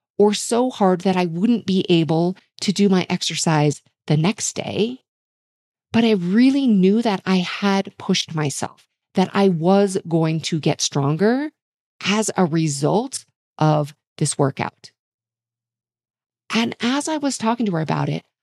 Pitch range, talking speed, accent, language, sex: 170-230 Hz, 150 wpm, American, English, female